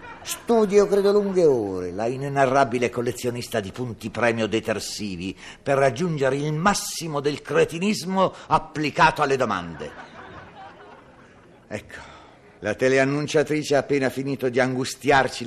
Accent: native